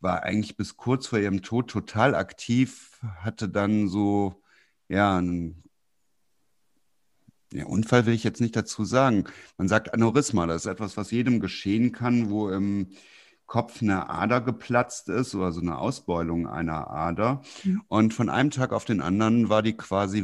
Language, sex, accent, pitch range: German, male, German, 95-115 Hz